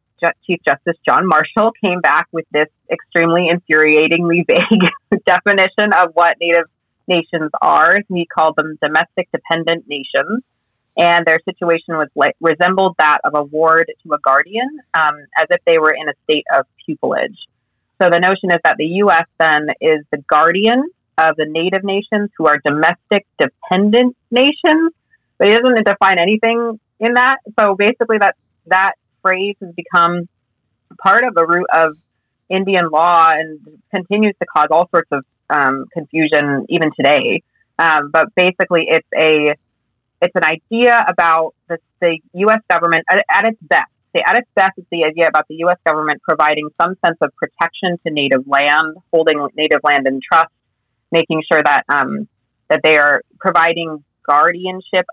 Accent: American